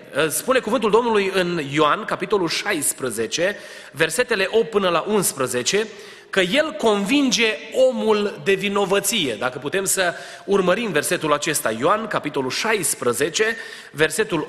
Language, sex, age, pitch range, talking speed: Romanian, male, 30-49, 190-255 Hz, 115 wpm